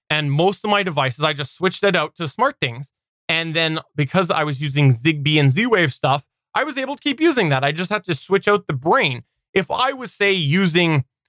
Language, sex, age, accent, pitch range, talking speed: English, male, 20-39, American, 140-185 Hz, 230 wpm